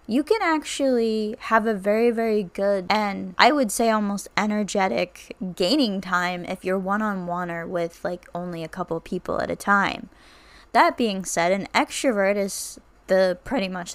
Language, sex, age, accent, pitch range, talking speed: English, female, 10-29, American, 180-215 Hz, 165 wpm